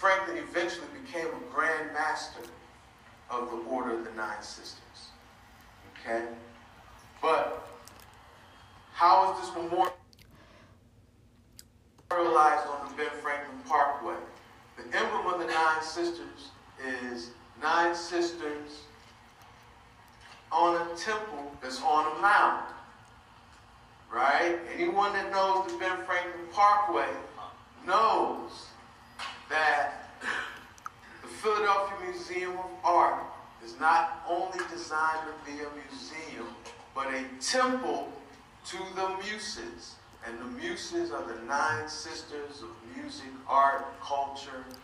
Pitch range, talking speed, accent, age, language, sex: 120-180 Hz, 105 wpm, American, 40-59, English, male